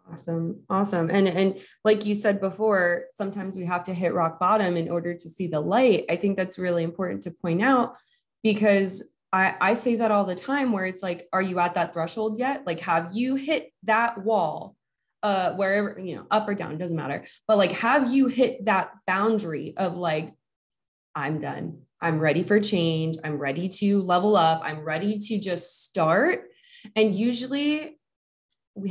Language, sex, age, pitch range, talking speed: English, female, 20-39, 170-215 Hz, 185 wpm